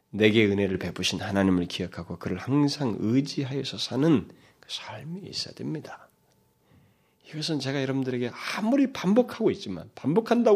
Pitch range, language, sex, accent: 100-135 Hz, Korean, male, native